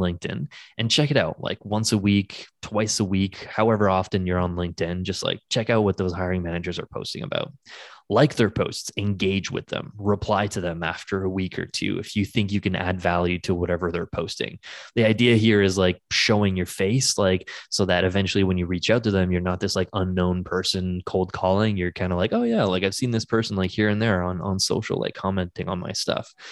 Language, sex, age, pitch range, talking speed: English, male, 20-39, 90-110 Hz, 230 wpm